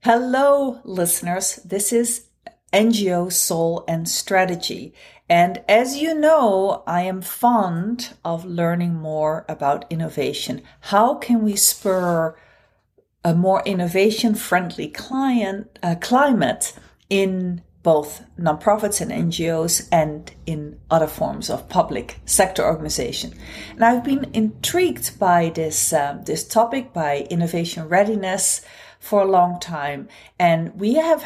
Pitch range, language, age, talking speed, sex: 165-220 Hz, English, 40-59, 120 wpm, female